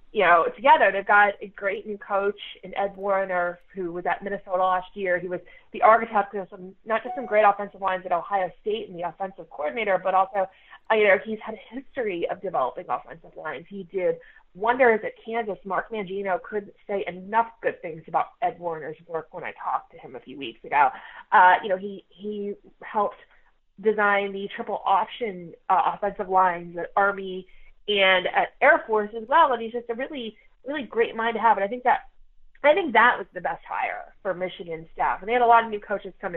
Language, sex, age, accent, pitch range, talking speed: English, female, 30-49, American, 185-235 Hz, 210 wpm